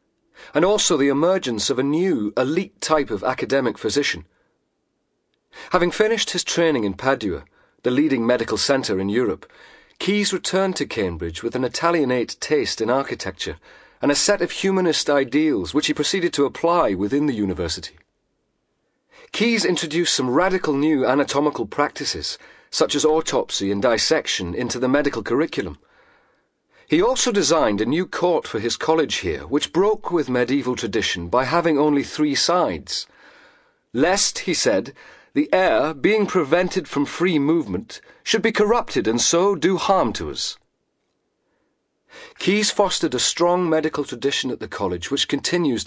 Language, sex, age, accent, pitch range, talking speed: English, male, 40-59, British, 125-195 Hz, 150 wpm